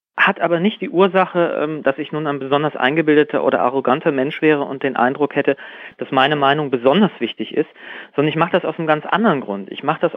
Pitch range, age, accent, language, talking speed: 130-170 Hz, 40-59, German, German, 220 wpm